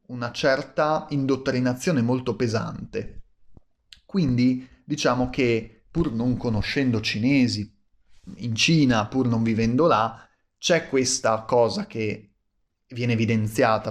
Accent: native